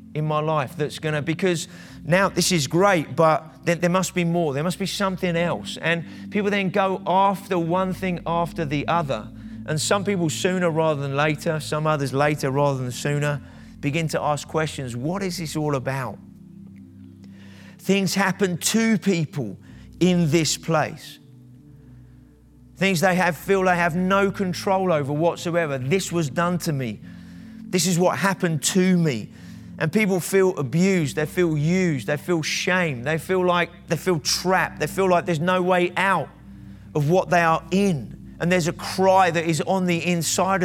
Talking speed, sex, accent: 175 wpm, male, British